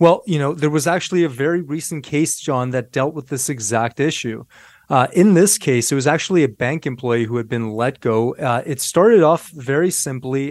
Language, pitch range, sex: English, 120-155 Hz, male